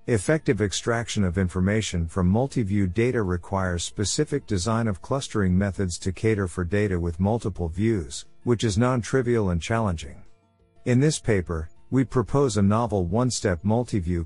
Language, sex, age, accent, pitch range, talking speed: English, male, 50-69, American, 90-115 Hz, 145 wpm